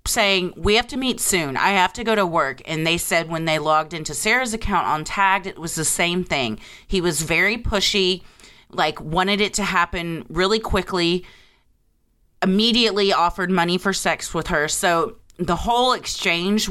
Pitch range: 175-230 Hz